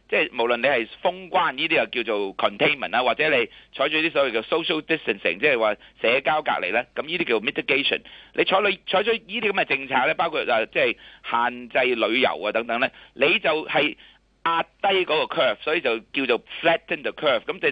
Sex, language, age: male, Chinese, 30-49